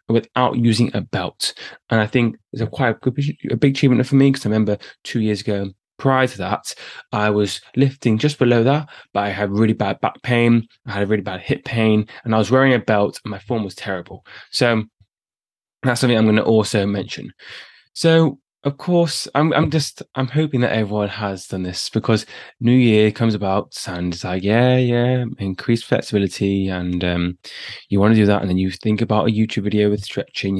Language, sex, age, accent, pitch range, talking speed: English, male, 20-39, British, 105-135 Hz, 210 wpm